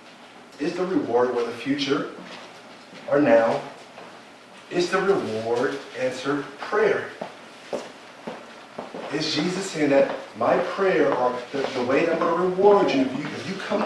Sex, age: male, 30-49